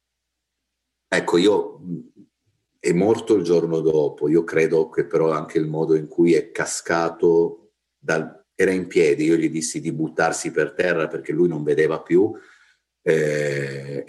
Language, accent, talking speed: Italian, native, 150 wpm